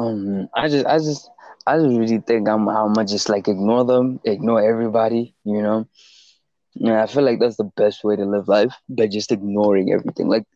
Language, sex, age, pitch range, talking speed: English, male, 20-39, 105-120 Hz, 200 wpm